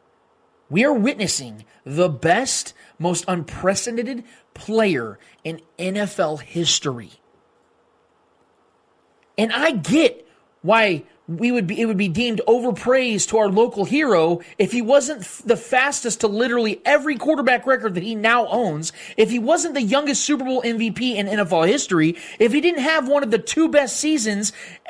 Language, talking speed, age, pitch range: English, 140 wpm, 30-49, 190-270 Hz